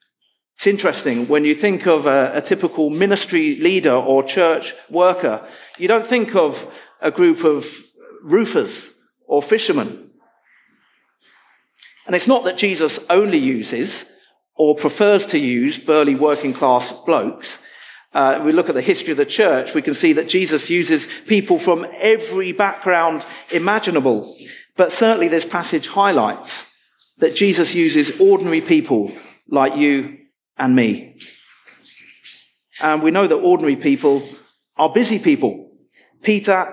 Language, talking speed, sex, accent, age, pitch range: English, 135 wpm, male, British, 50-69, 150-215 Hz